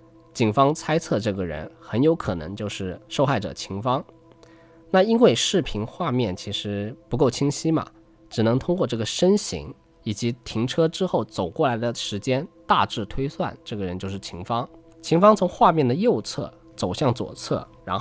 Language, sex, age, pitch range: Chinese, male, 20-39, 105-165 Hz